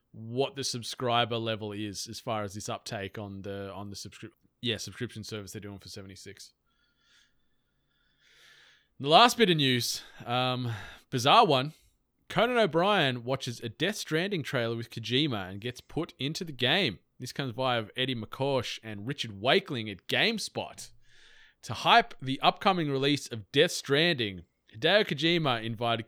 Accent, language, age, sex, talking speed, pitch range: Australian, English, 20-39, male, 155 wpm, 110-155 Hz